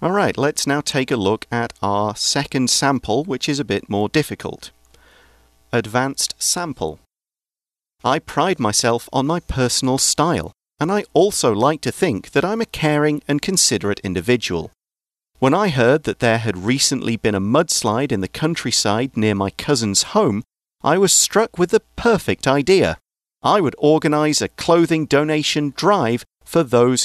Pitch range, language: 105-155 Hz, Chinese